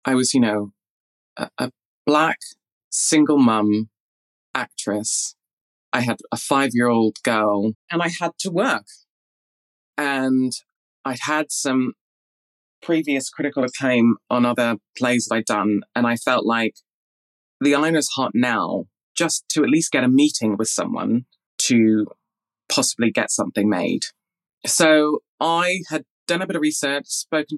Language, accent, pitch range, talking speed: English, British, 115-145 Hz, 140 wpm